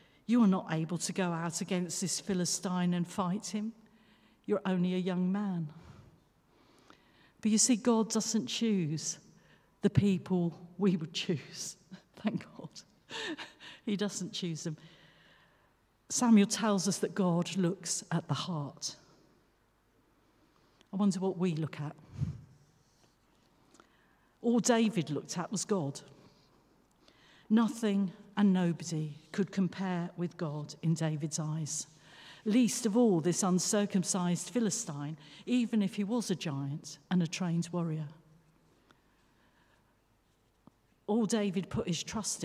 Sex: female